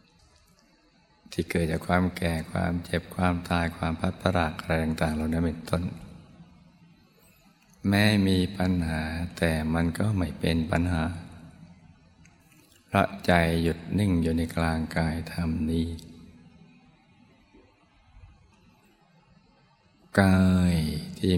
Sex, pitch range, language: male, 80-90 Hz, Thai